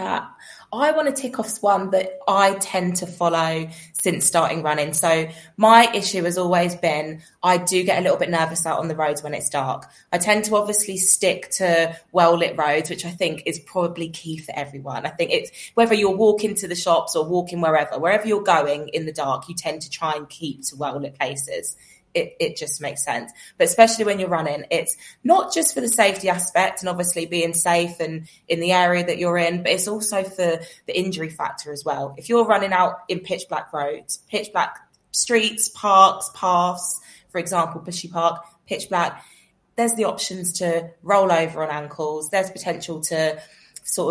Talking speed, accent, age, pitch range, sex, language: 200 wpm, British, 20-39, 160-195 Hz, female, English